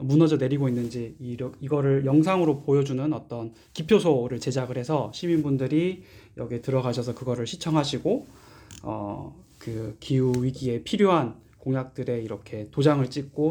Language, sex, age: Korean, male, 20-39